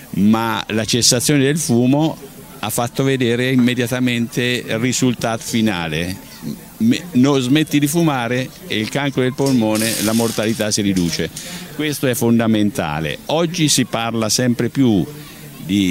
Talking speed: 130 wpm